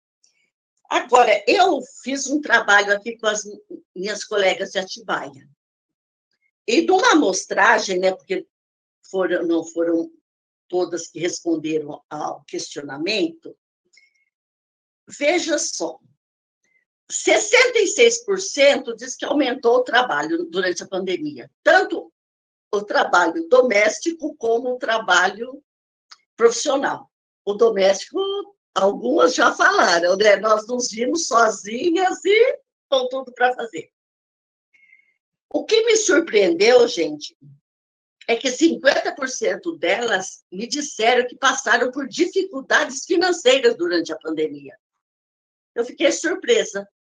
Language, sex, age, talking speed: Portuguese, female, 60-79, 100 wpm